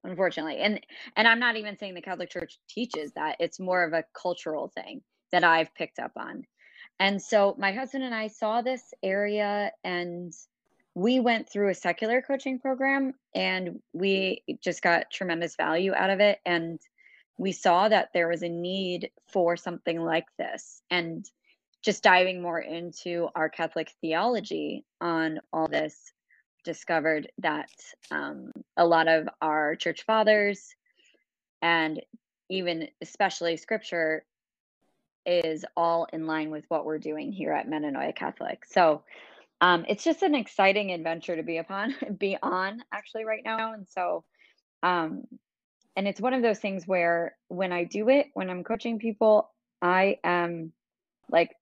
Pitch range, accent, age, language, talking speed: 170-225 Hz, American, 20-39, English, 155 wpm